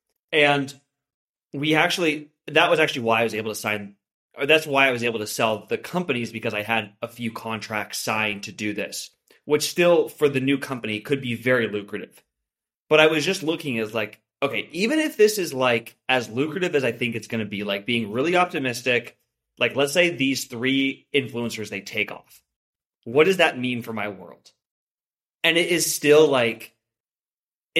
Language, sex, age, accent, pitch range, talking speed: English, male, 20-39, American, 115-150 Hz, 195 wpm